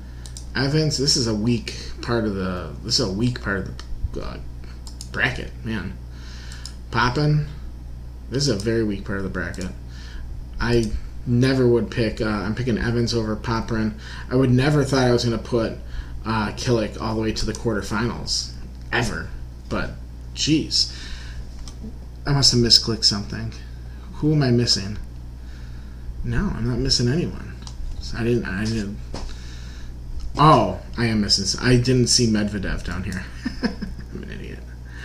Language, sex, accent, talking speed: English, male, American, 155 wpm